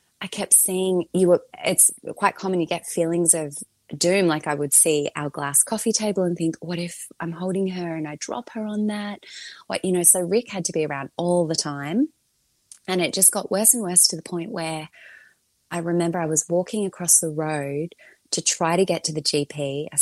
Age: 20-39